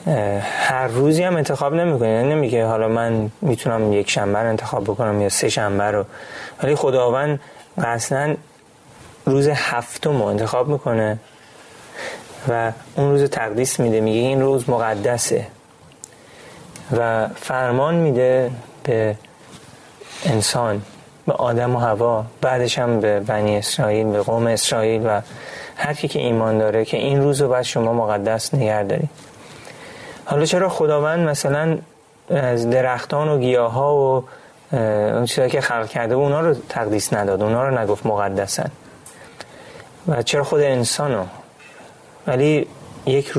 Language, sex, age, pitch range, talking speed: Persian, male, 30-49, 110-140 Hz, 130 wpm